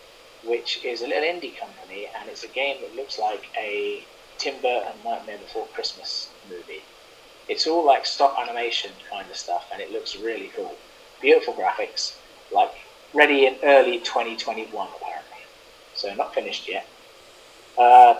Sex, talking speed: male, 150 wpm